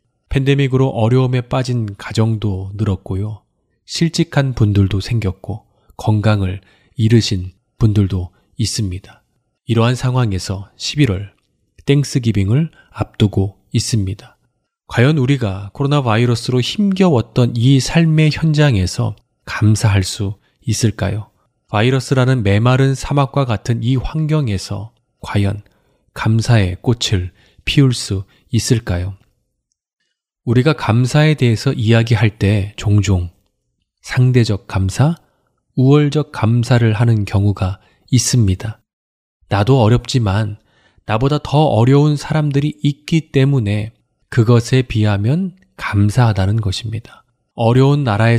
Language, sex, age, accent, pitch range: Korean, male, 20-39, native, 105-135 Hz